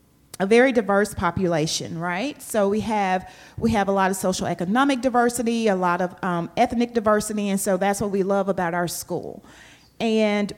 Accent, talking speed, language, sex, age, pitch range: American, 180 wpm, English, female, 40-59, 185-225 Hz